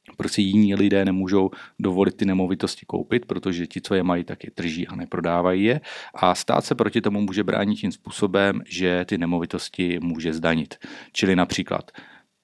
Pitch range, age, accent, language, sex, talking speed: 85-100 Hz, 40-59, native, Czech, male, 170 wpm